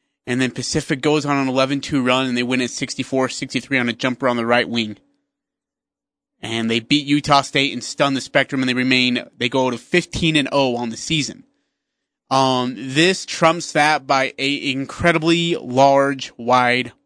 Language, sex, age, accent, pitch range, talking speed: English, male, 30-49, American, 125-165 Hz, 180 wpm